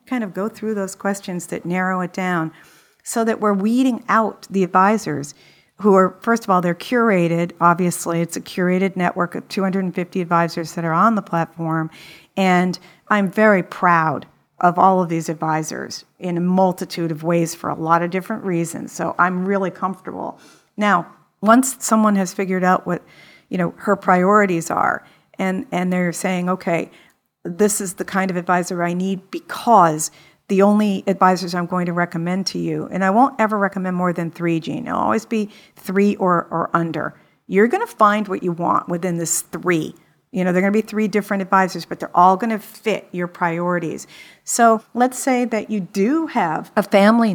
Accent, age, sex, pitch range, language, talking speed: American, 50-69, female, 175-205 Hz, English, 185 wpm